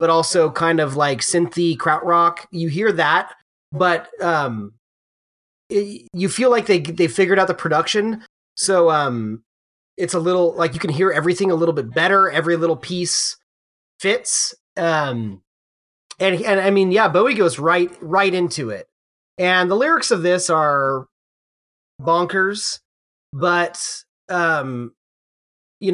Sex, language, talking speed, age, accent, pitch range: male, English, 145 wpm, 30-49, American, 145-190 Hz